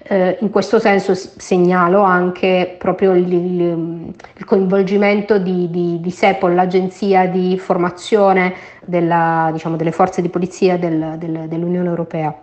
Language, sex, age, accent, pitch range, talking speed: Italian, female, 30-49, native, 175-200 Hz, 140 wpm